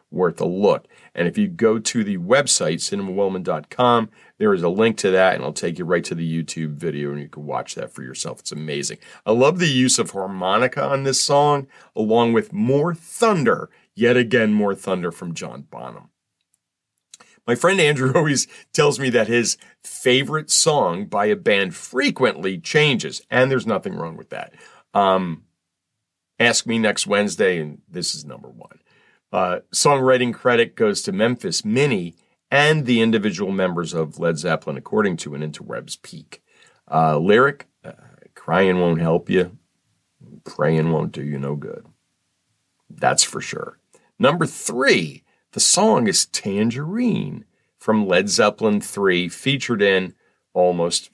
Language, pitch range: English, 90-145 Hz